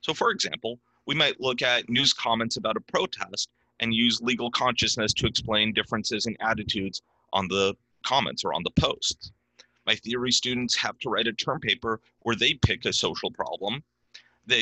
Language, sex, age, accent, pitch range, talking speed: English, male, 30-49, American, 110-125 Hz, 180 wpm